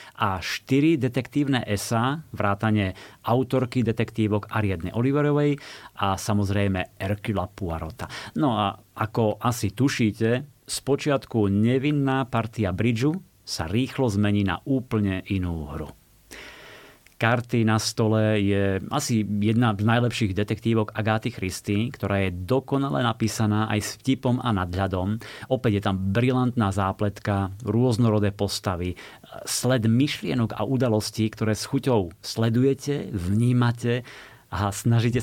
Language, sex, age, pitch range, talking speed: Slovak, male, 30-49, 100-120 Hz, 115 wpm